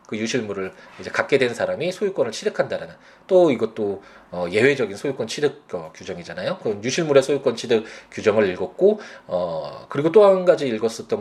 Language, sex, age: Korean, male, 20-39